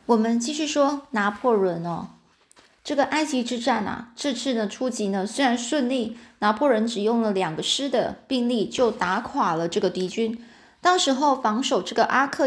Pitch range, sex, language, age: 195-250 Hz, female, Chinese, 20-39